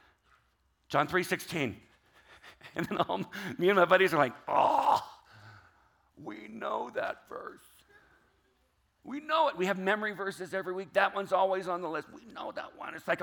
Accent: American